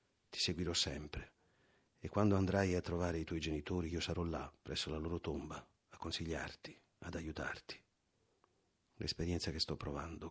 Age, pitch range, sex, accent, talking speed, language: 40-59, 80-90 Hz, male, native, 150 wpm, Italian